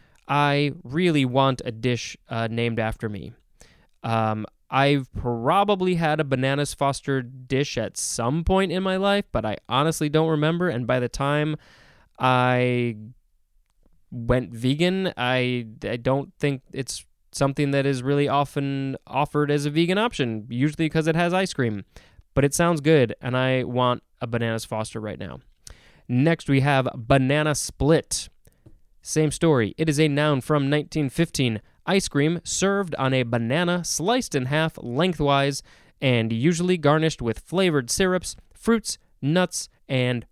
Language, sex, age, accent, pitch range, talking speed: English, male, 20-39, American, 120-155 Hz, 150 wpm